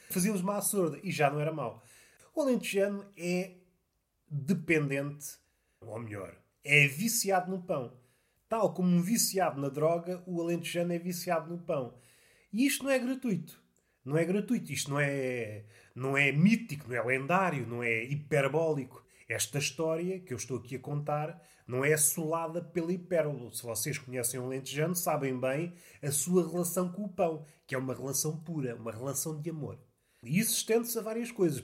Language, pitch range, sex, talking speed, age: Portuguese, 140-205 Hz, male, 175 wpm, 20-39